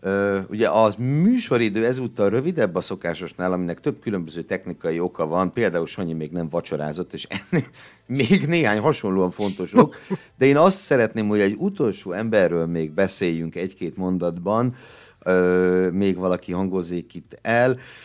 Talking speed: 145 wpm